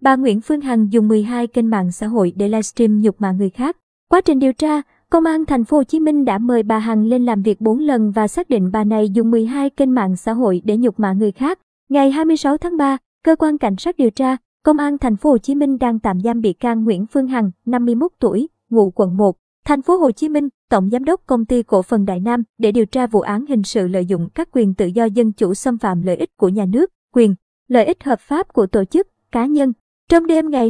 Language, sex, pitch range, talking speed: Vietnamese, male, 215-275 Hz, 255 wpm